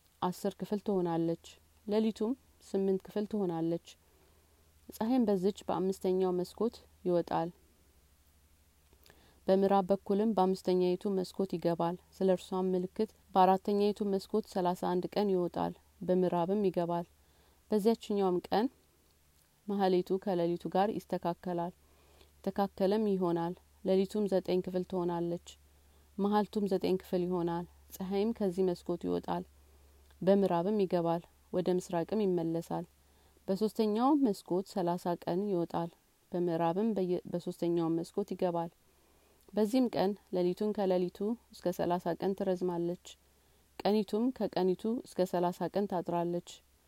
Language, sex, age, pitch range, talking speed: Amharic, female, 30-49, 170-195 Hz, 90 wpm